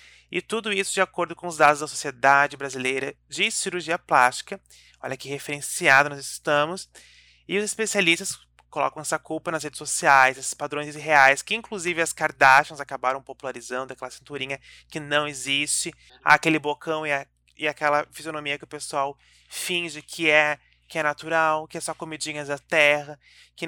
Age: 20-39